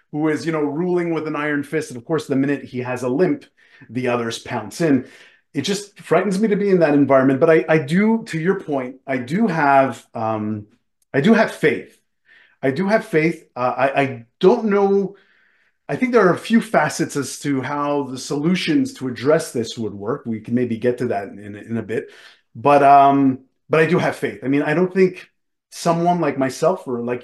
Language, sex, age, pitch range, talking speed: English, male, 30-49, 120-170 Hz, 220 wpm